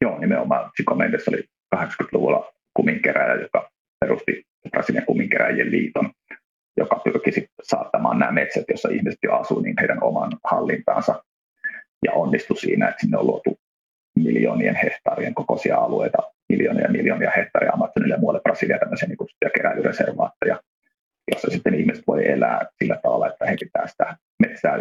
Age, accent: 30-49, native